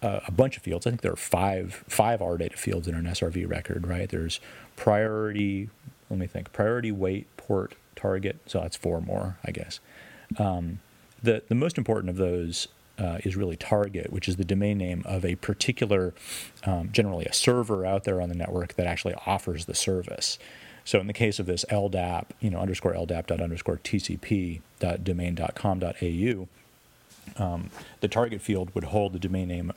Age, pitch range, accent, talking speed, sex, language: 30-49, 90-105 Hz, American, 195 wpm, male, English